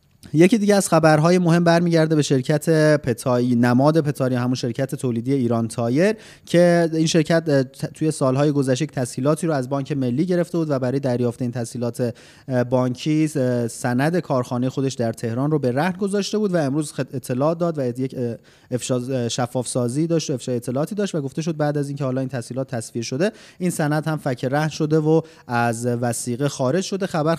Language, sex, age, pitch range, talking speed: Persian, male, 30-49, 125-155 Hz, 180 wpm